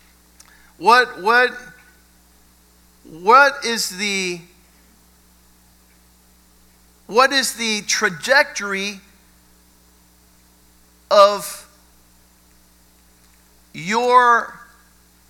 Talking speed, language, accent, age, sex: 45 wpm, English, American, 50-69, male